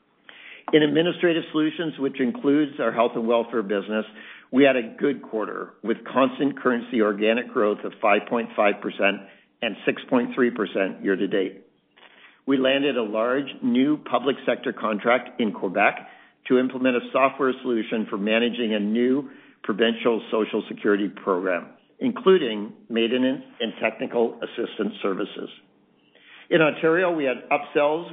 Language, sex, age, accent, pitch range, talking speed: English, male, 50-69, American, 115-145 Hz, 125 wpm